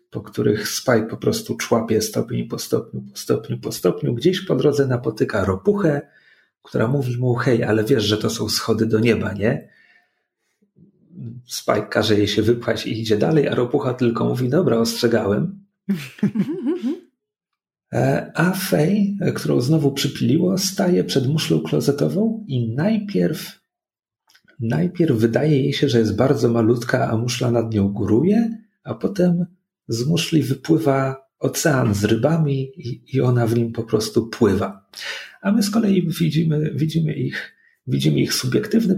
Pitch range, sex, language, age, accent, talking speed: 115-175 Hz, male, Polish, 40-59, native, 145 wpm